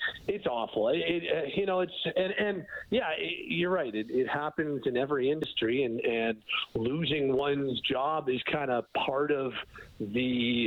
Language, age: English, 40-59